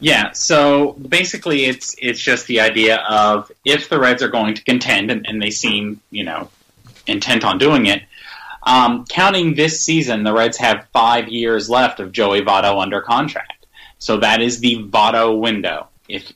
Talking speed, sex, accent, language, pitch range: 175 wpm, male, American, English, 105-125 Hz